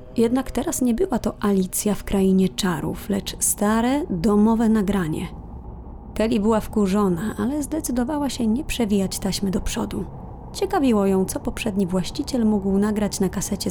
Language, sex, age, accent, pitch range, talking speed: Polish, female, 20-39, native, 195-240 Hz, 145 wpm